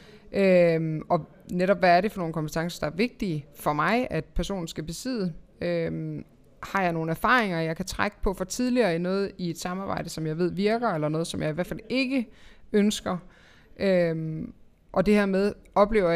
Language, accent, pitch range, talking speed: Danish, native, 160-195 Hz, 185 wpm